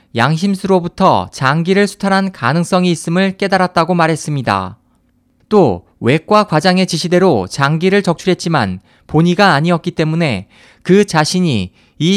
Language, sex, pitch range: Korean, male, 155-190 Hz